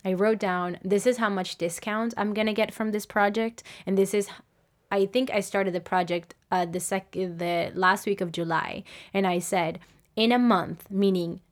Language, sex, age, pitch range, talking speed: English, female, 20-39, 175-205 Hz, 200 wpm